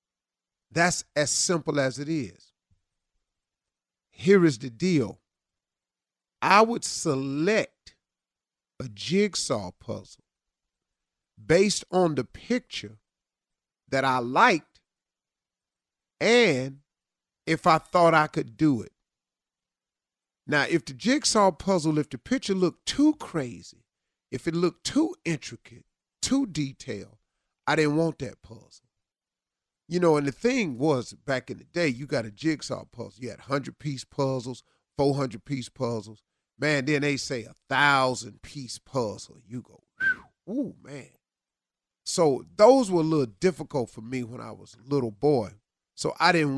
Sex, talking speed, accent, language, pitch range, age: male, 135 wpm, American, English, 110-165 Hz, 40-59